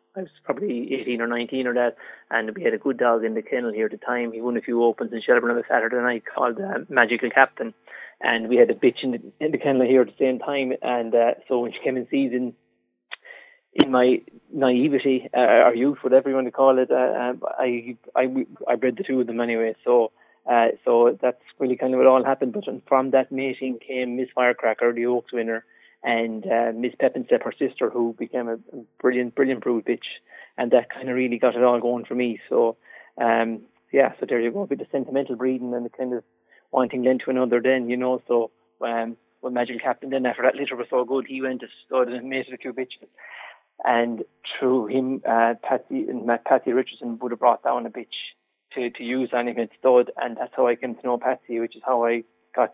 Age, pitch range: 30-49, 120-130 Hz